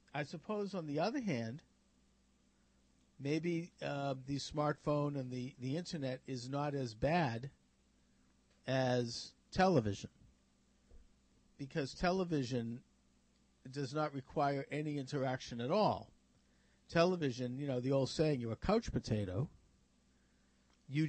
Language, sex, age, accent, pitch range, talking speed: English, male, 50-69, American, 110-145 Hz, 115 wpm